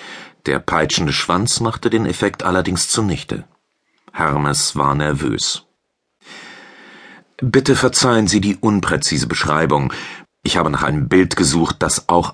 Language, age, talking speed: German, 40-59, 120 wpm